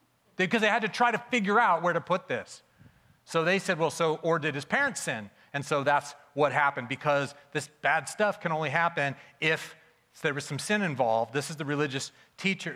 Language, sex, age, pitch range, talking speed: English, male, 40-59, 140-185 Hz, 210 wpm